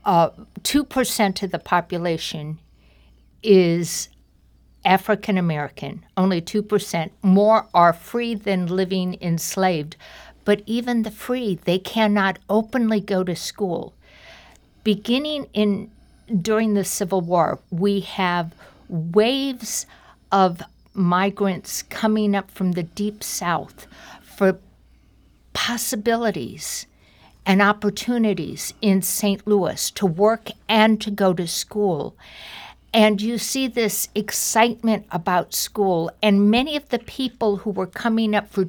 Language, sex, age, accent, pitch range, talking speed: English, female, 60-79, American, 185-220 Hz, 115 wpm